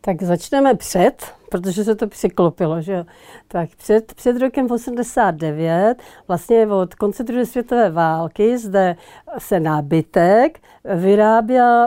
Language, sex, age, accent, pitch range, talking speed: Czech, female, 50-69, native, 175-215 Hz, 115 wpm